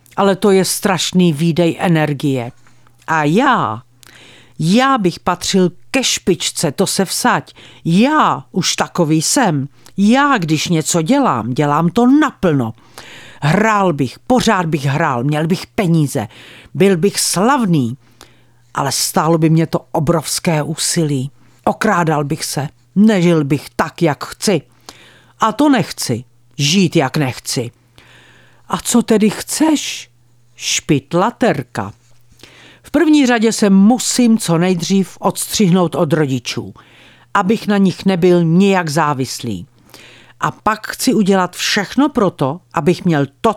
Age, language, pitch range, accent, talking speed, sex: 50-69, Czech, 140-205 Hz, native, 125 wpm, female